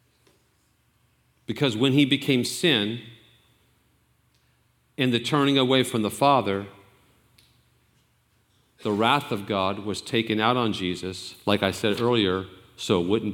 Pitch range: 110-140 Hz